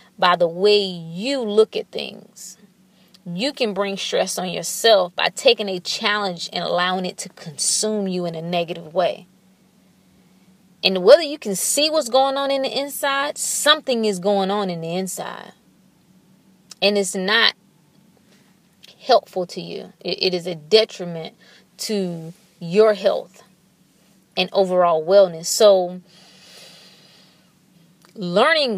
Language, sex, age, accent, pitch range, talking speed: English, female, 20-39, American, 185-235 Hz, 130 wpm